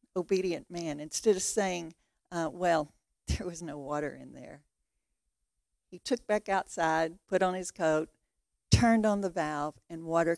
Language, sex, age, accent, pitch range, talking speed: English, female, 60-79, American, 165-195 Hz, 155 wpm